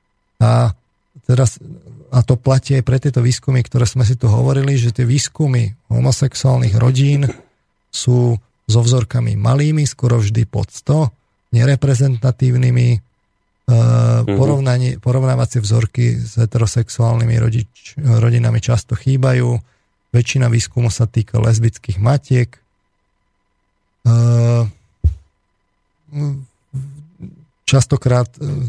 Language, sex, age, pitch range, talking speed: Slovak, male, 40-59, 115-130 Hz, 95 wpm